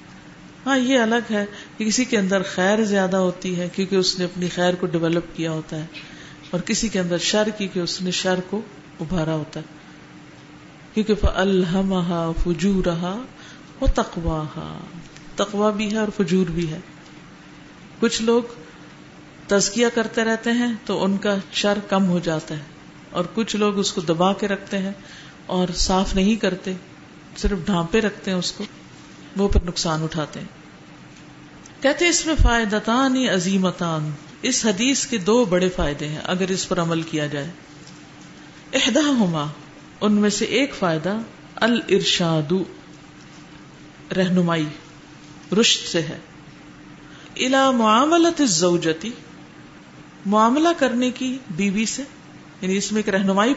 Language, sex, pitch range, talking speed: Urdu, female, 175-220 Hz, 135 wpm